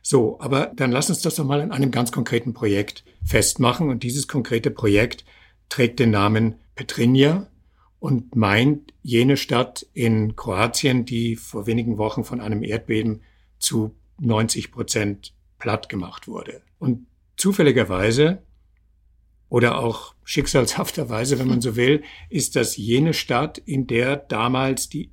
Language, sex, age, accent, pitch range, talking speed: German, male, 60-79, German, 100-130 Hz, 140 wpm